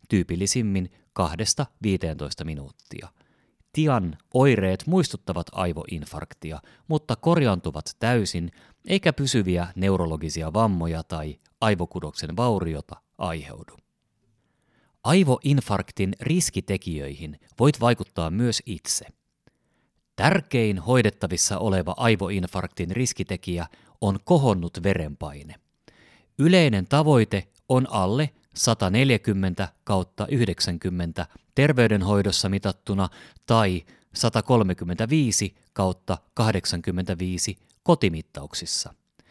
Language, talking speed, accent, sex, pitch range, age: Finnish, 70 wpm, native, male, 90-115 Hz, 30-49